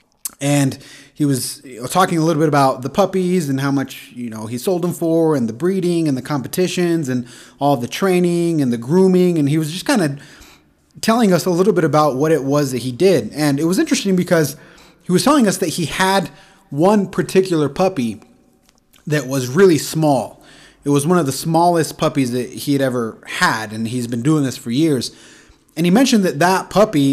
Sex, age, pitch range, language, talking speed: male, 30-49, 135-175 Hz, English, 210 wpm